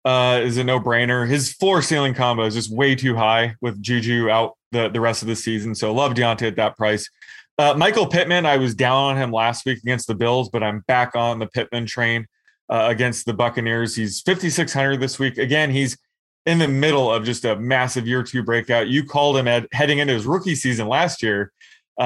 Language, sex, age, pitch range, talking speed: English, male, 20-39, 115-135 Hz, 225 wpm